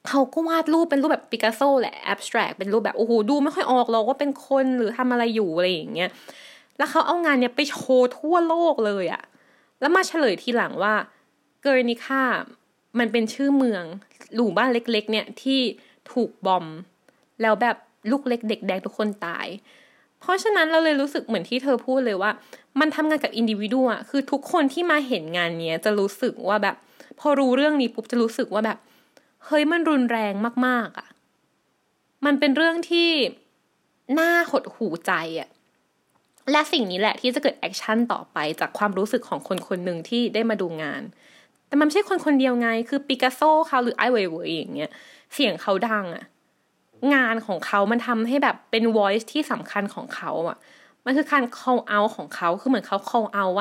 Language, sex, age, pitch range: Thai, female, 20-39, 215-285 Hz